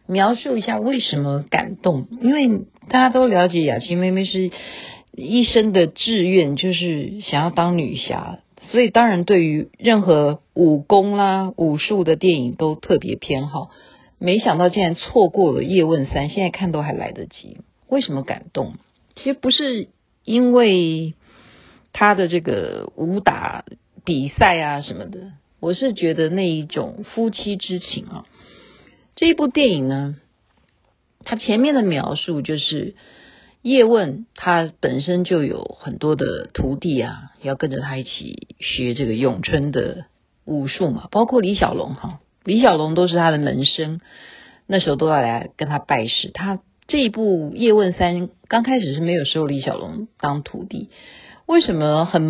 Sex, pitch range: female, 150-215 Hz